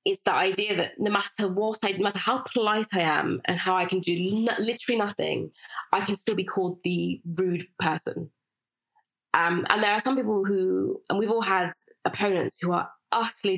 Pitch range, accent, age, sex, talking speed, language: 175-225 Hz, British, 20-39, female, 195 wpm, English